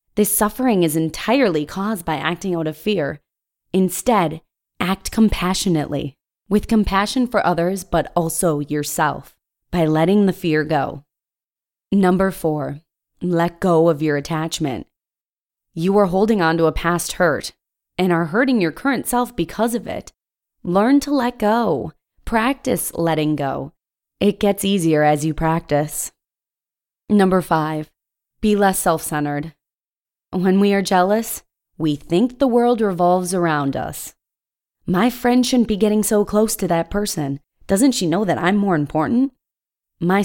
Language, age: English, 20-39